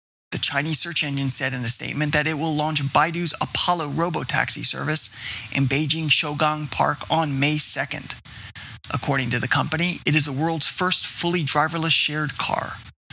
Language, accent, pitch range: English, American, 135-160 Hz